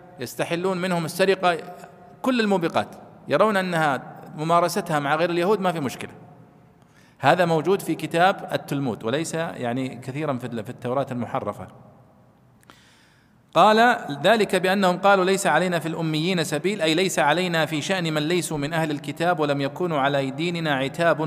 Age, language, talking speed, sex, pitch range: 40-59, Arabic, 140 wpm, male, 135-185 Hz